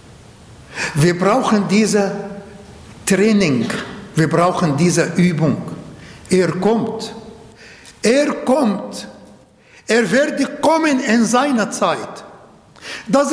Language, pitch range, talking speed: German, 200-250 Hz, 85 wpm